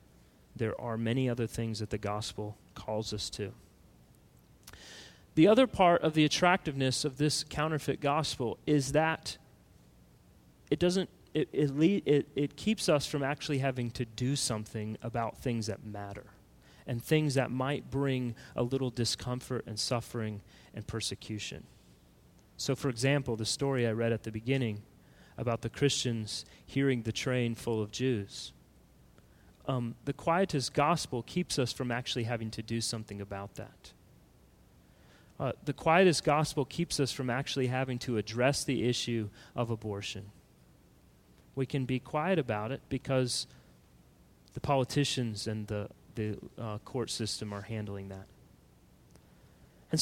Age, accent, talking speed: 30-49, American, 145 wpm